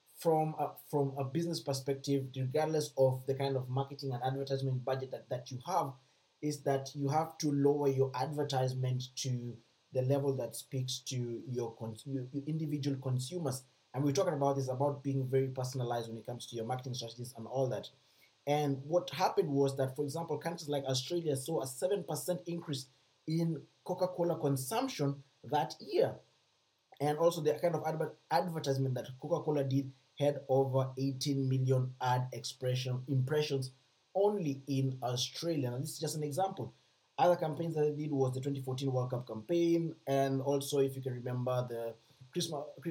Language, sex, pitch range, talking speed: English, male, 130-150 Hz, 170 wpm